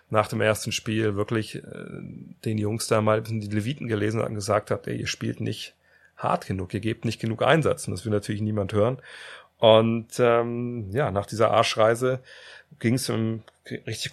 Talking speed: 185 wpm